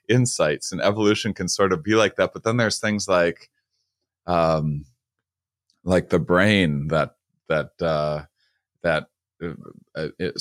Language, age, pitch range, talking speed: English, 30-49, 75-90 Hz, 135 wpm